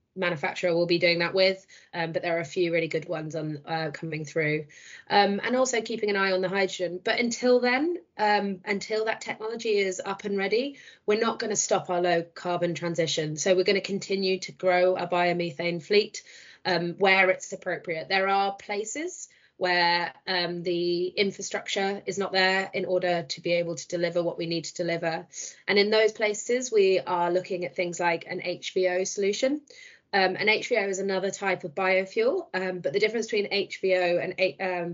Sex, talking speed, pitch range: female, 195 wpm, 175-200 Hz